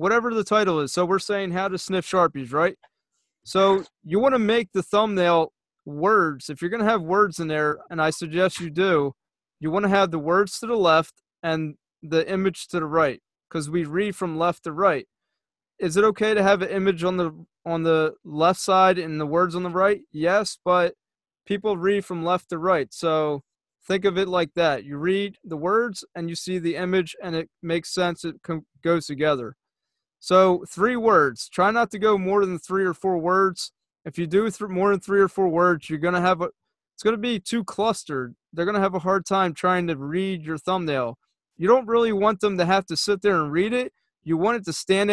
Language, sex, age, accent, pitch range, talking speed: English, male, 30-49, American, 165-200 Hz, 220 wpm